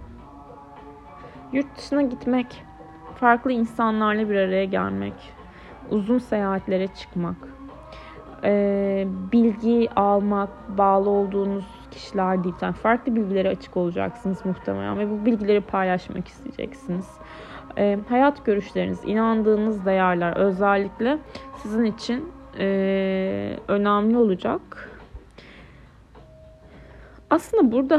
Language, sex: Turkish, female